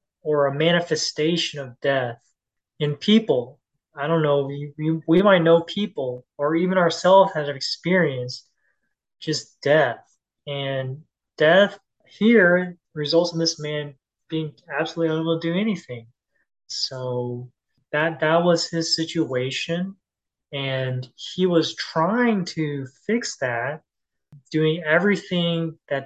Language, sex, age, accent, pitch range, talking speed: English, male, 20-39, American, 140-170 Hz, 120 wpm